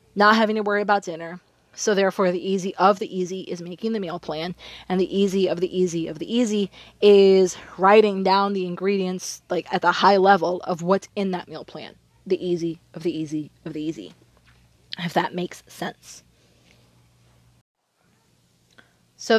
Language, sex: English, female